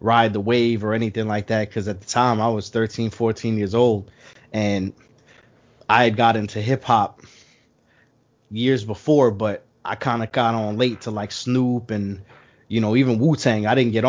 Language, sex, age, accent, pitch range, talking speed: English, male, 20-39, American, 105-125 Hz, 190 wpm